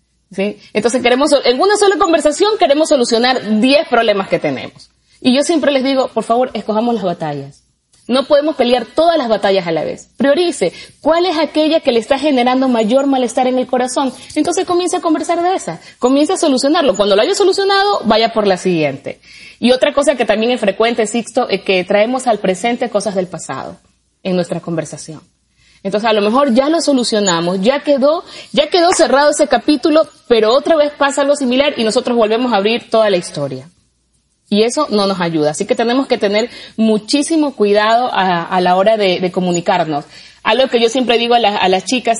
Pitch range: 195-280 Hz